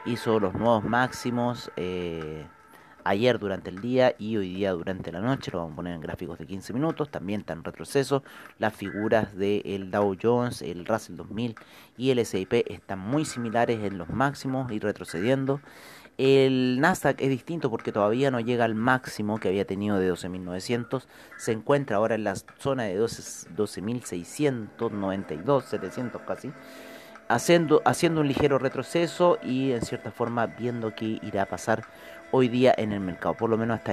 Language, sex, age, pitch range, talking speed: Spanish, male, 40-59, 95-130 Hz, 170 wpm